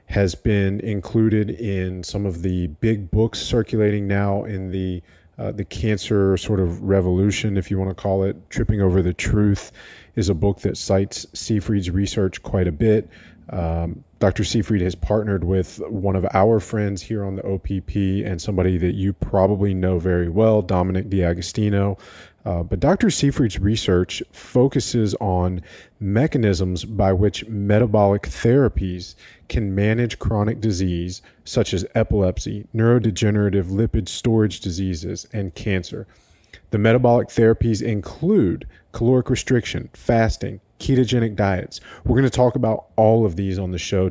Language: English